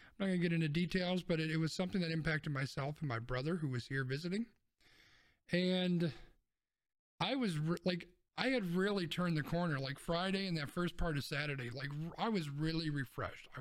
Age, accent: 50-69, American